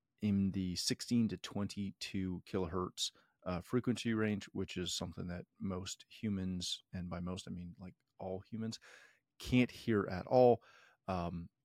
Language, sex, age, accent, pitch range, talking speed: English, male, 30-49, American, 95-130 Hz, 145 wpm